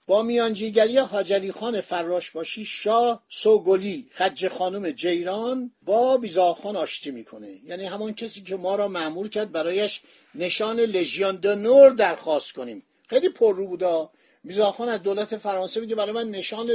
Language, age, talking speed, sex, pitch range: Persian, 50-69, 145 wpm, male, 170-215 Hz